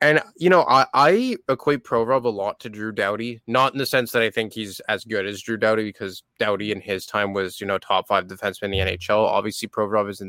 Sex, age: male, 20-39